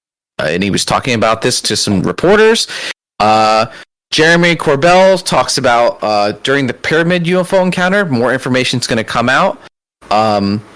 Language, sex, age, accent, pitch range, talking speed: English, male, 30-49, American, 105-155 Hz, 160 wpm